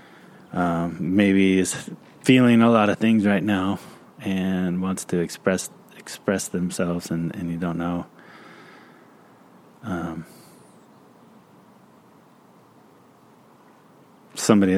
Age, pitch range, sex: 20-39, 90-105 Hz, male